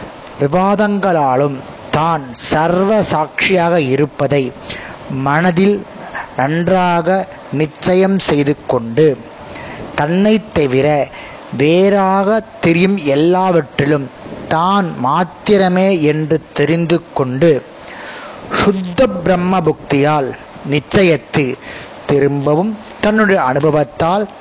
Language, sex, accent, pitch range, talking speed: Tamil, male, native, 145-190 Hz, 55 wpm